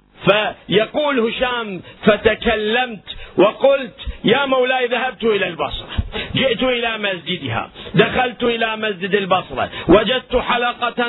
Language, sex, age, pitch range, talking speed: Arabic, male, 50-69, 205-270 Hz, 95 wpm